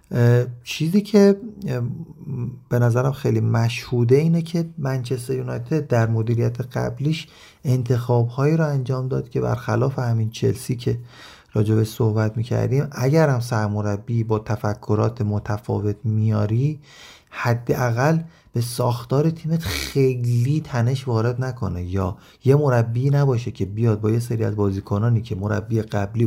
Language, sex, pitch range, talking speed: Persian, male, 105-130 Hz, 125 wpm